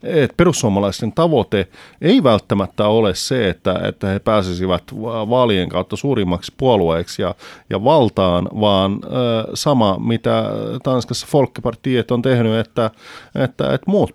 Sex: male